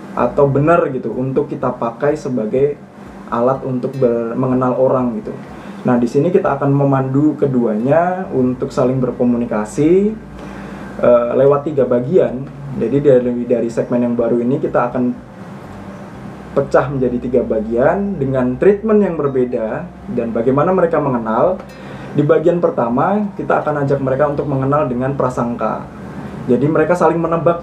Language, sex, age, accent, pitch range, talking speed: Indonesian, male, 20-39, native, 125-150 Hz, 135 wpm